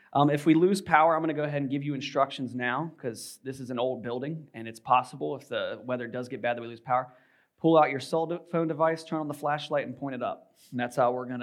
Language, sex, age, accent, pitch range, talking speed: English, male, 20-39, American, 125-155 Hz, 285 wpm